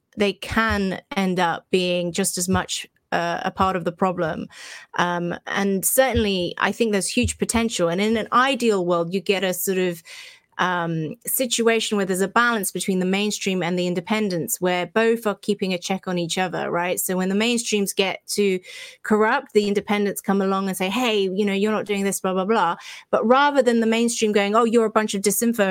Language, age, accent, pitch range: English, 30-49, British, 185-230 Hz